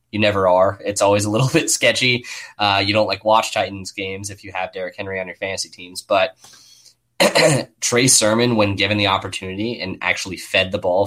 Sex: male